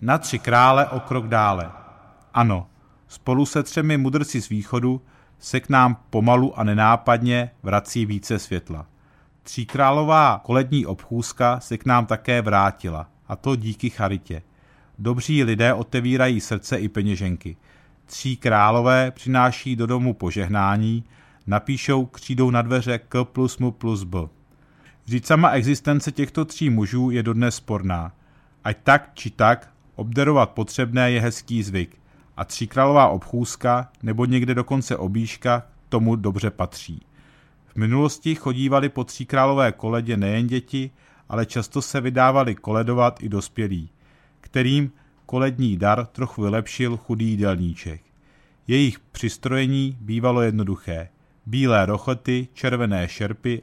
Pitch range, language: 105-130 Hz, Czech